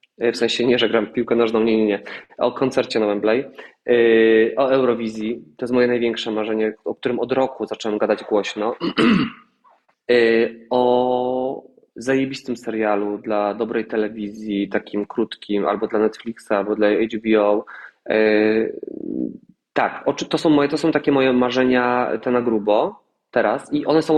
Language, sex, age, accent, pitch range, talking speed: English, male, 20-39, Polish, 110-145 Hz, 135 wpm